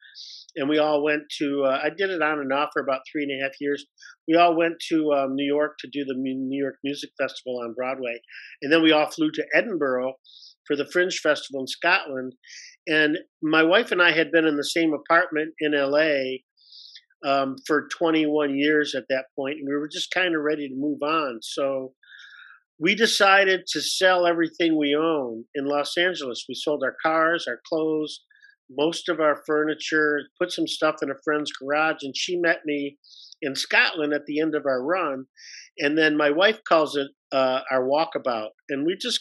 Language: English